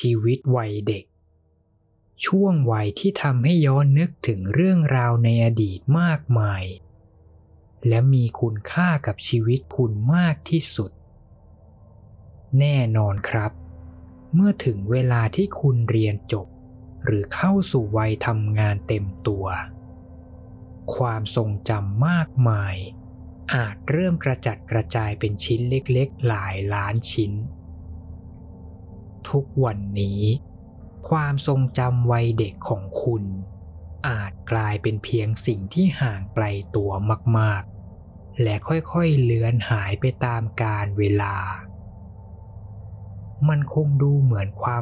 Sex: male